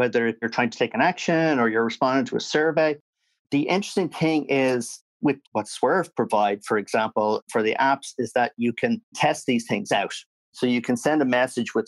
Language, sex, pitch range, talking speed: English, male, 120-140 Hz, 205 wpm